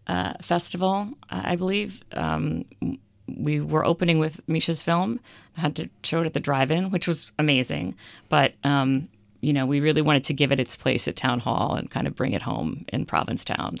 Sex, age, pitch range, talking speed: female, 50-69, 130-155 Hz, 195 wpm